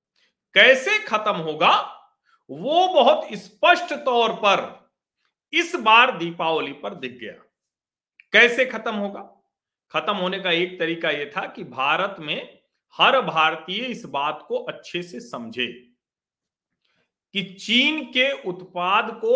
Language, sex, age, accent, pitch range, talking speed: Hindi, male, 40-59, native, 180-280 Hz, 125 wpm